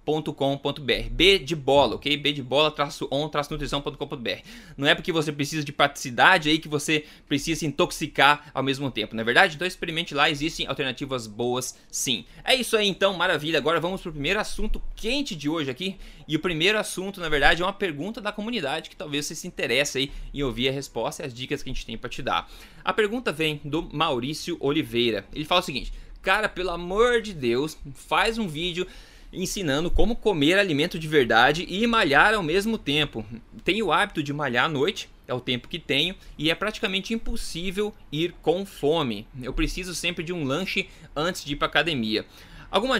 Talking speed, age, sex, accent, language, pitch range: 200 wpm, 20-39, male, Brazilian, Portuguese, 140-185 Hz